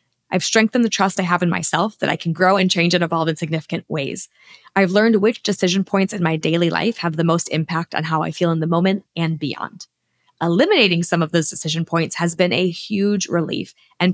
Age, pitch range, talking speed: 20-39, 160-195 Hz, 225 wpm